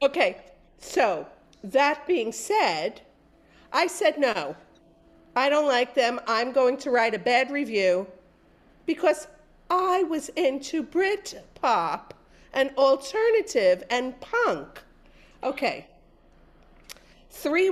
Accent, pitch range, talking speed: American, 220-310 Hz, 100 wpm